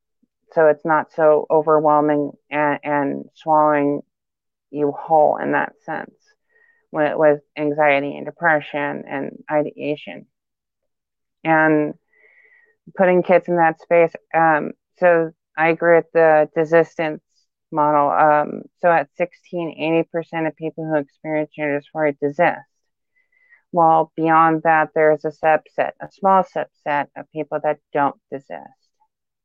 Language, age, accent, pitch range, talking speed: English, 30-49, American, 150-170 Hz, 125 wpm